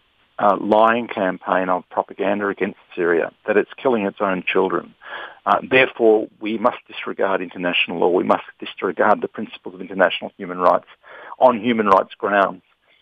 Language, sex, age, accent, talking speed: English, male, 50-69, Australian, 150 wpm